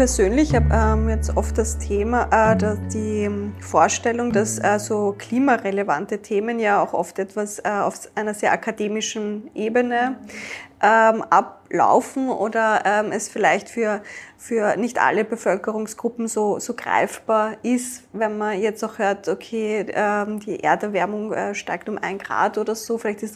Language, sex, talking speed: German, female, 125 wpm